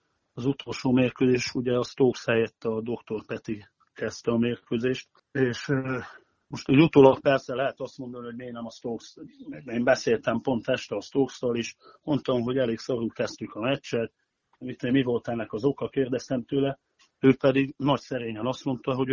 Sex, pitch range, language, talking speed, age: male, 115-130 Hz, Hungarian, 170 wpm, 40-59